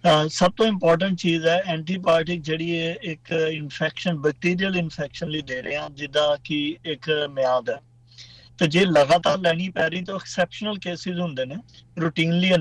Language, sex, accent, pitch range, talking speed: English, male, Indian, 145-175 Hz, 85 wpm